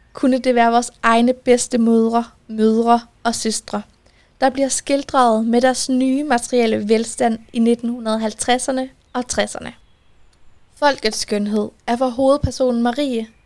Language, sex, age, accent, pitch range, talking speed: Danish, female, 20-39, native, 215-255 Hz, 125 wpm